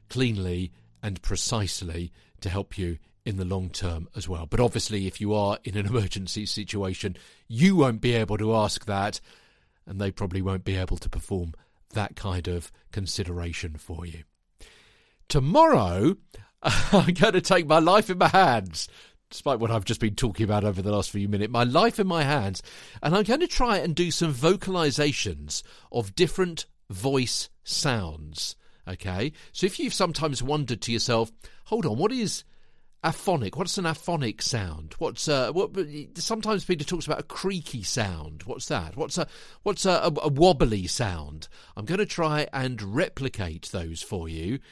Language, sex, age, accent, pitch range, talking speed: English, male, 50-69, British, 95-150 Hz, 170 wpm